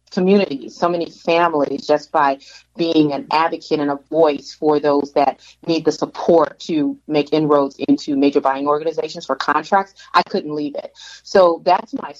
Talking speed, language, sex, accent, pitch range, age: 165 wpm, English, female, American, 145-170 Hz, 30-49